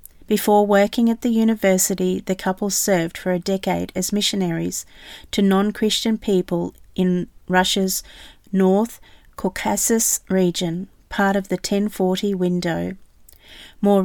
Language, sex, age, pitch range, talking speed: English, female, 40-59, 180-205 Hz, 115 wpm